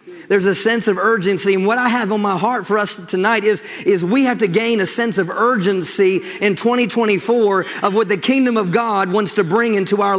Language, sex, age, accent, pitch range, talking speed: English, male, 40-59, American, 200-235 Hz, 225 wpm